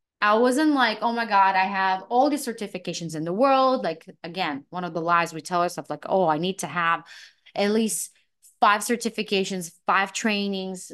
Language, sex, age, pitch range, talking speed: English, female, 20-39, 170-220 Hz, 190 wpm